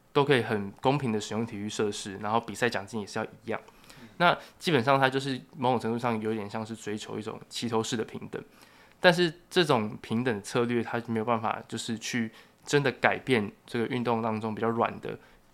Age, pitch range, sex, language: 20-39, 110-125 Hz, male, Chinese